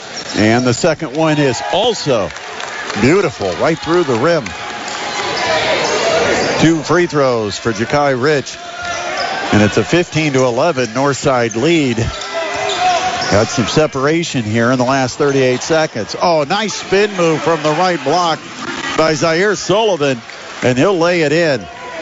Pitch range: 135-175 Hz